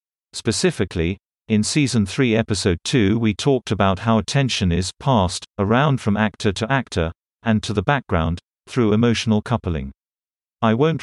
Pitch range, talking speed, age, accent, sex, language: 95-120 Hz, 145 wpm, 50-69, British, male, English